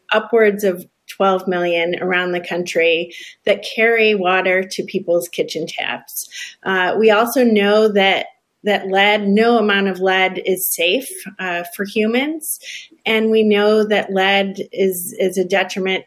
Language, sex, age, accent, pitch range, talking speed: English, female, 30-49, American, 185-210 Hz, 145 wpm